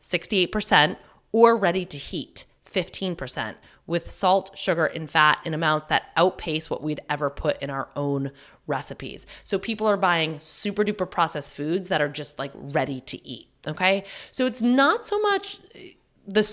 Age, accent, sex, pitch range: 30-49, American, female, 145-190 Hz